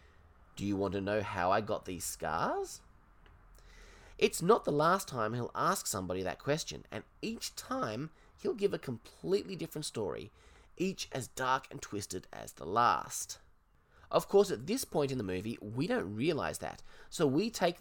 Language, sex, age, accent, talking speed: English, male, 20-39, Australian, 175 wpm